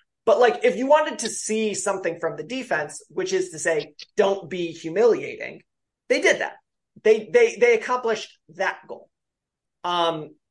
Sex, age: male, 30-49